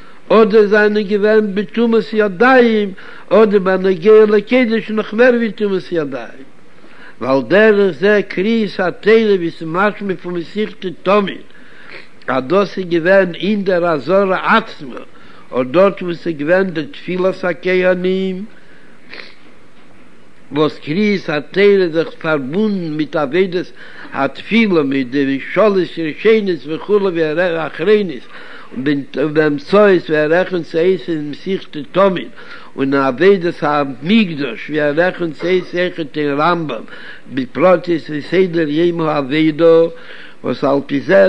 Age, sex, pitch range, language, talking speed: 60-79, male, 160-200 Hz, Hebrew, 95 wpm